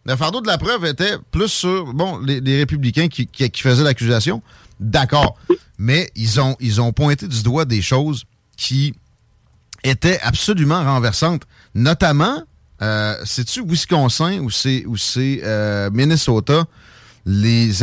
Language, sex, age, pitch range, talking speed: French, male, 40-59, 115-145 Hz, 145 wpm